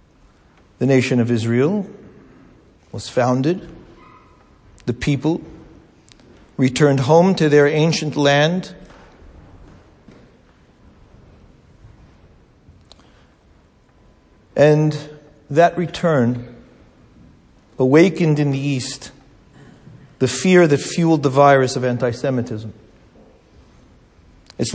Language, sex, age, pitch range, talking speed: English, male, 50-69, 120-165 Hz, 75 wpm